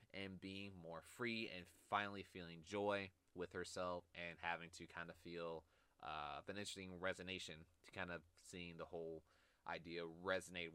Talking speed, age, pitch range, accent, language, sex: 155 wpm, 20-39, 90-100 Hz, American, English, male